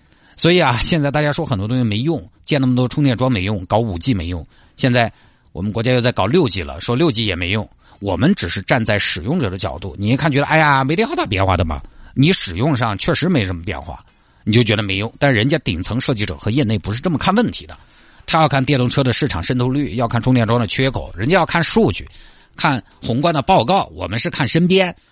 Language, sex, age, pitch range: Chinese, male, 50-69, 100-150 Hz